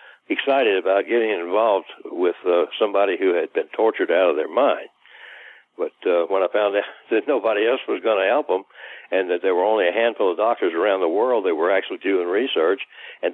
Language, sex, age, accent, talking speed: English, male, 60-79, American, 210 wpm